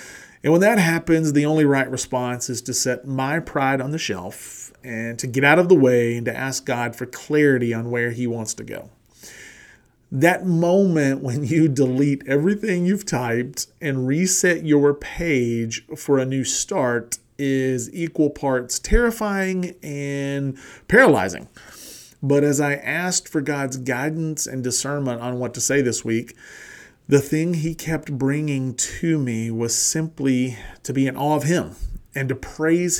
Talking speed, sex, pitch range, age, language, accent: 165 wpm, male, 125-150 Hz, 40-59, English, American